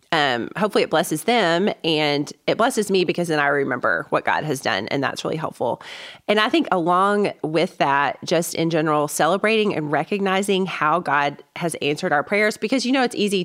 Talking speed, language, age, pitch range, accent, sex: 195 wpm, English, 30-49, 150-195 Hz, American, female